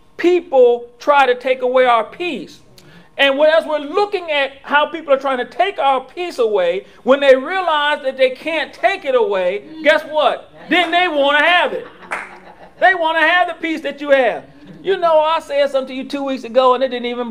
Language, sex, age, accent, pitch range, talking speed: English, male, 40-59, American, 230-320 Hz, 210 wpm